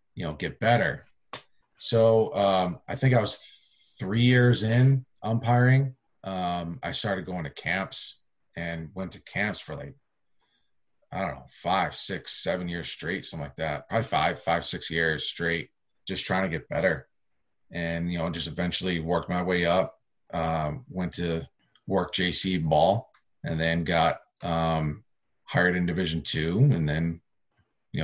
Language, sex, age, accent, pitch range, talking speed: English, male, 30-49, American, 85-125 Hz, 160 wpm